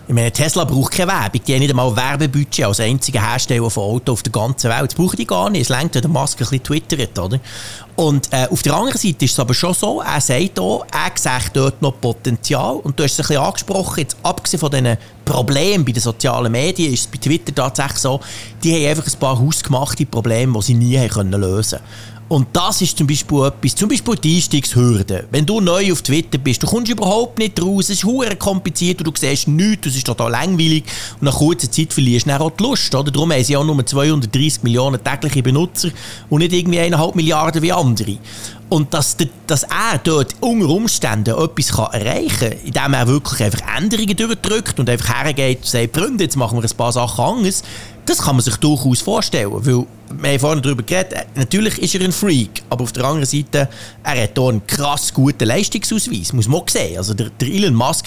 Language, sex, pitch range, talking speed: German, male, 120-165 Hz, 220 wpm